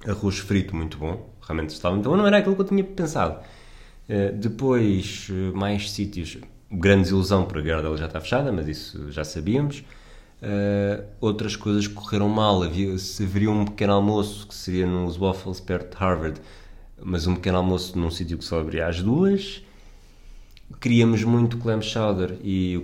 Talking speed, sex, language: 170 wpm, male, Portuguese